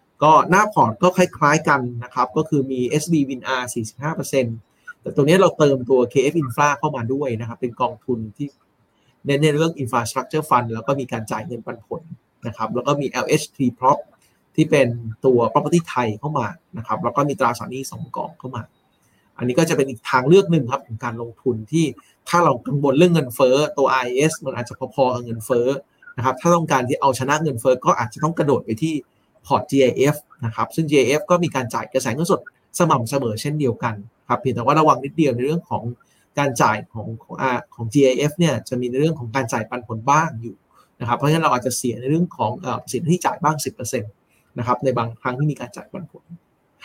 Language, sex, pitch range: Thai, male, 120-155 Hz